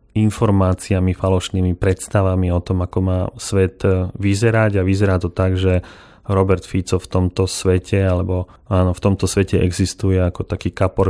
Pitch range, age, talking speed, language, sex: 95-105 Hz, 30-49, 150 wpm, Slovak, male